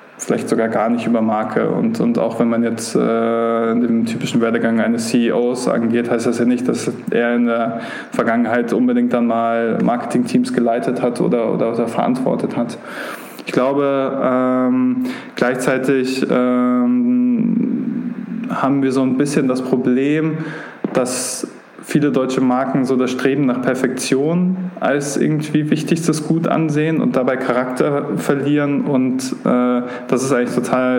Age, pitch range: 20-39, 120-150 Hz